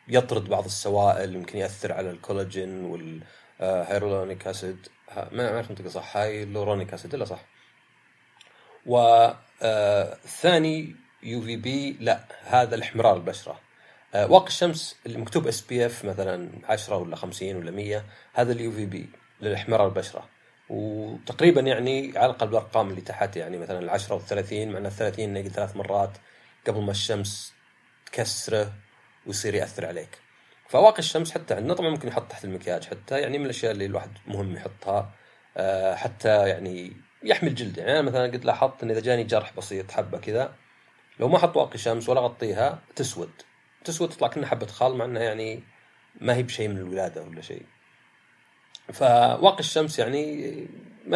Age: 30-49